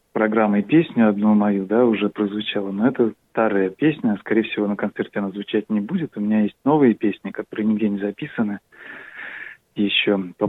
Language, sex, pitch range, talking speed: Russian, male, 105-125 Hz, 175 wpm